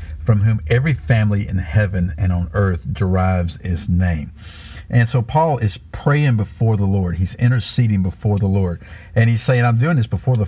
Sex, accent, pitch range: male, American, 95-120 Hz